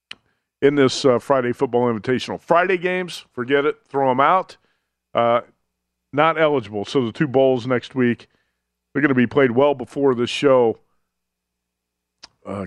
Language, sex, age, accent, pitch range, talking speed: English, male, 50-69, American, 115-145 Hz, 150 wpm